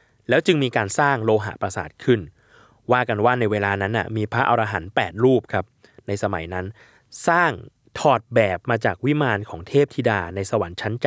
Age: 20-39